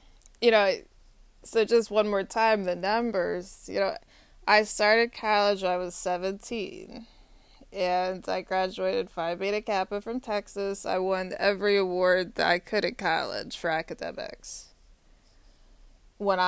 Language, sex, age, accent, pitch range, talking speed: English, female, 20-39, American, 180-205 Hz, 140 wpm